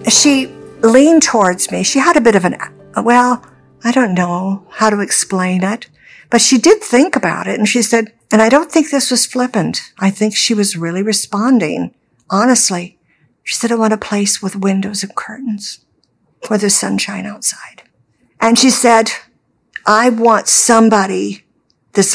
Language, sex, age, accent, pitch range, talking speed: English, female, 60-79, American, 185-230 Hz, 170 wpm